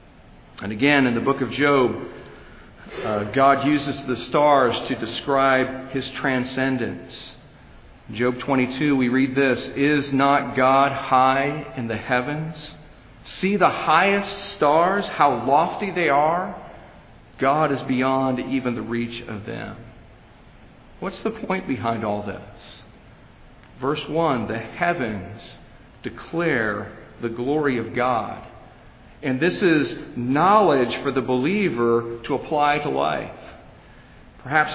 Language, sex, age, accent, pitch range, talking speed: English, male, 50-69, American, 120-145 Hz, 125 wpm